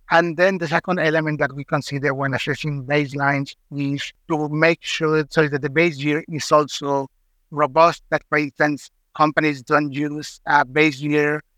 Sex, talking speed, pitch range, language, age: male, 165 wpm, 145-165 Hz, English, 60-79